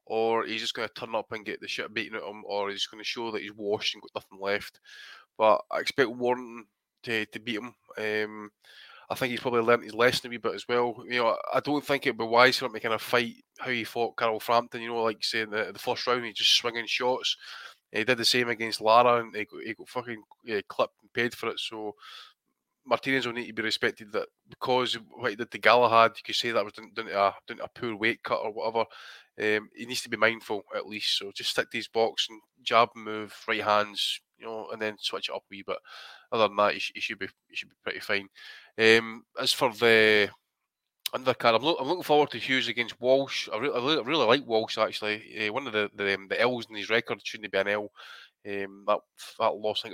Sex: male